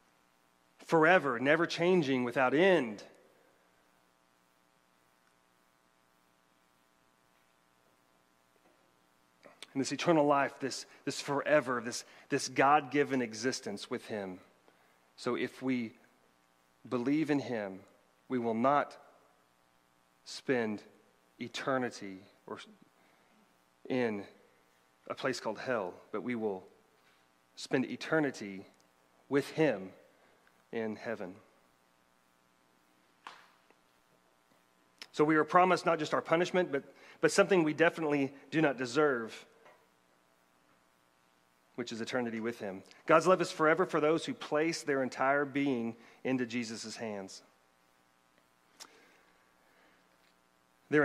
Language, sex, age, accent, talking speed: English, male, 40-59, American, 95 wpm